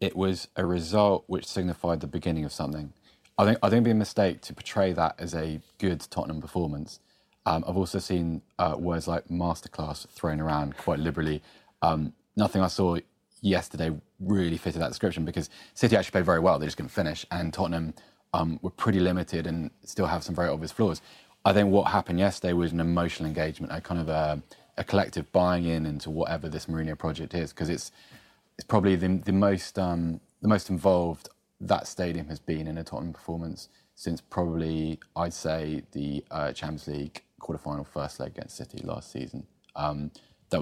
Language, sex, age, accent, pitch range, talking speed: English, male, 20-39, British, 80-95 Hz, 195 wpm